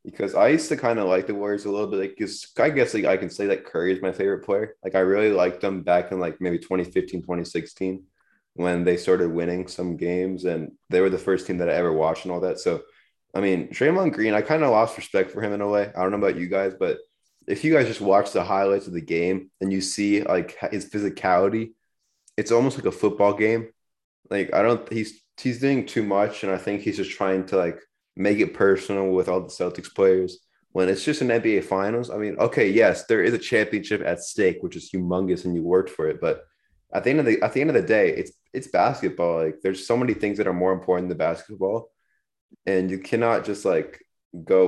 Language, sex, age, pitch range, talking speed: English, male, 20-39, 90-110 Hz, 245 wpm